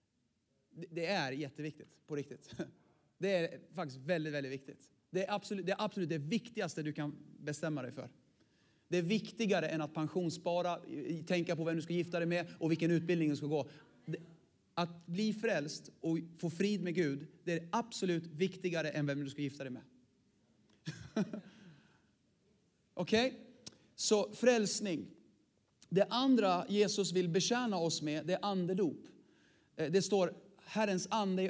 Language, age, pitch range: Swedish, 40-59, 155-195 Hz